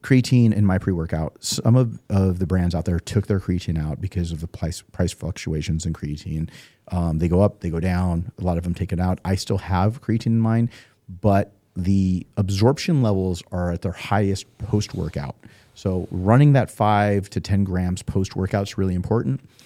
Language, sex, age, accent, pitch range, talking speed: English, male, 40-59, American, 90-105 Hz, 190 wpm